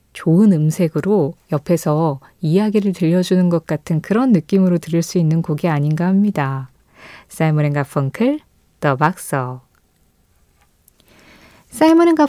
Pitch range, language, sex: 160-245 Hz, Korean, female